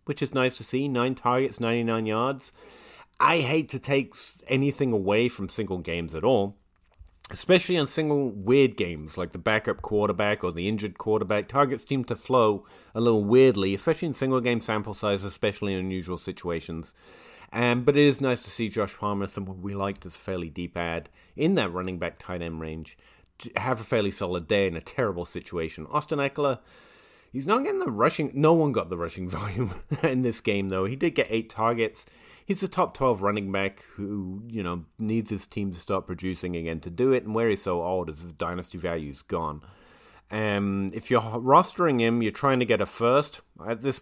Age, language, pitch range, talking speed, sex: 30-49, English, 90-130 Hz, 200 wpm, male